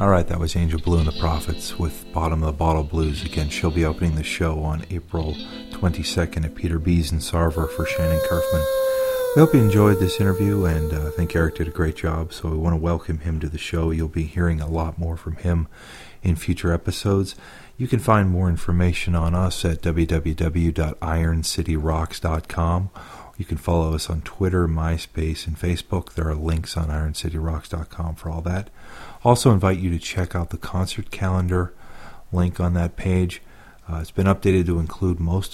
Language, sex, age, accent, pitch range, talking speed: English, male, 40-59, American, 80-95 Hz, 190 wpm